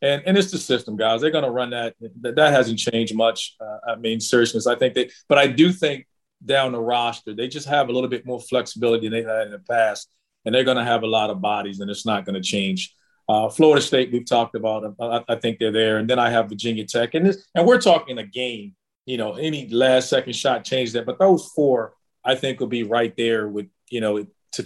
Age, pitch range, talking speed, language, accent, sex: 40-59, 115-135 Hz, 250 wpm, English, American, male